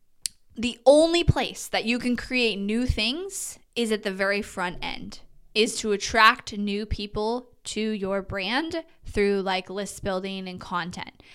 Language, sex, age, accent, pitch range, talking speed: English, female, 10-29, American, 205-245 Hz, 155 wpm